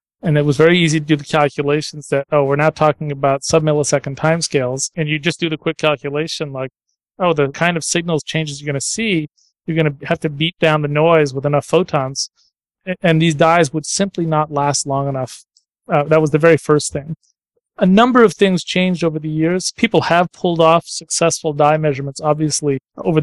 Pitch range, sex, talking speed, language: 145-165 Hz, male, 205 wpm, English